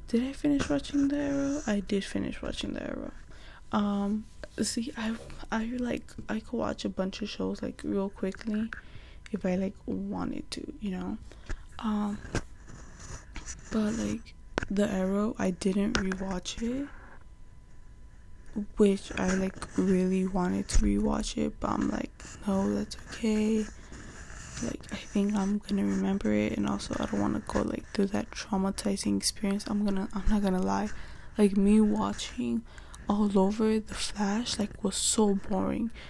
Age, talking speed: 10-29, 155 wpm